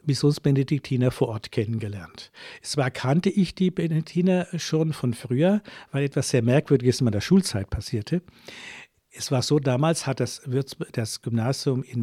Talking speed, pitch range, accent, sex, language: 155 wpm, 120-150 Hz, German, male, German